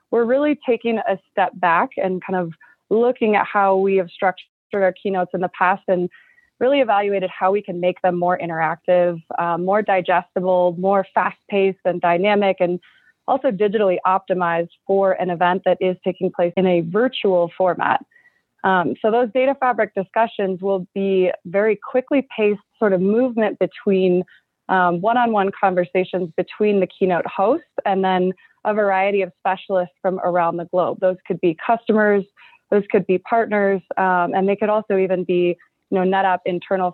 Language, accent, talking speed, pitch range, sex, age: English, American, 165 wpm, 180-210 Hz, female, 20-39